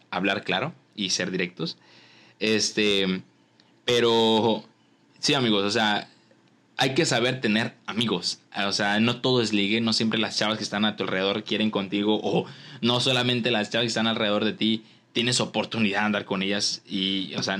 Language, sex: Spanish, male